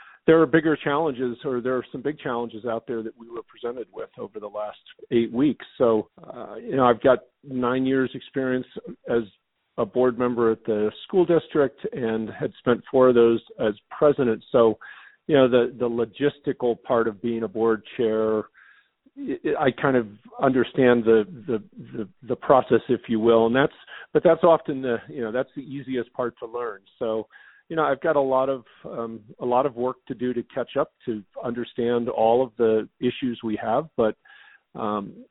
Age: 50-69